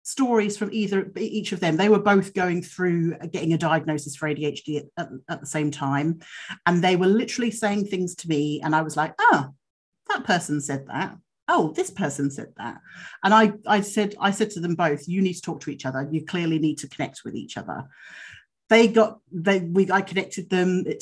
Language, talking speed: English, 215 wpm